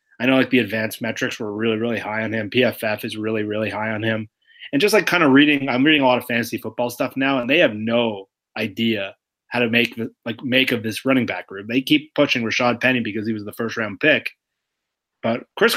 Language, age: English, 30-49